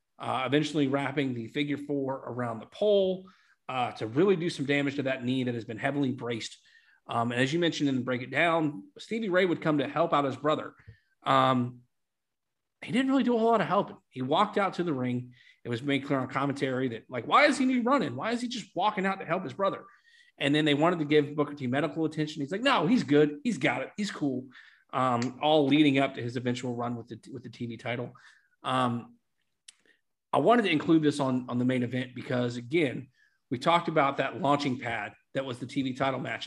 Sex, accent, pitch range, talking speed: male, American, 125-160 Hz, 230 wpm